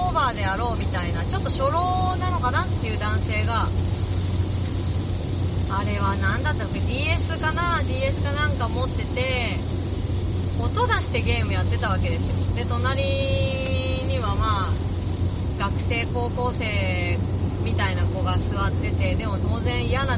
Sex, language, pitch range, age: female, Japanese, 90-100 Hz, 30-49